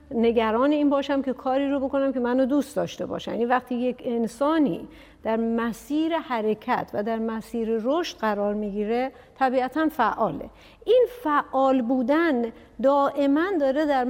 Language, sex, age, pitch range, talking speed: Persian, female, 50-69, 245-295 Hz, 140 wpm